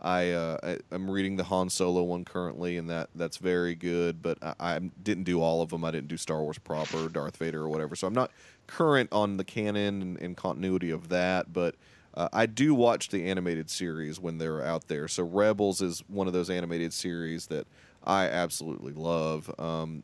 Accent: American